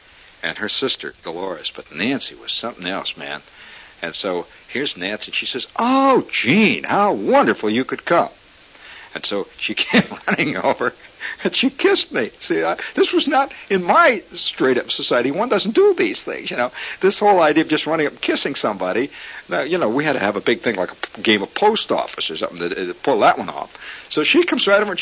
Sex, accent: male, American